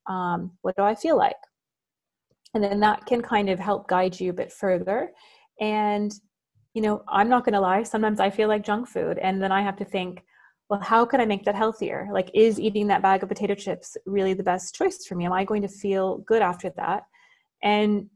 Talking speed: 225 wpm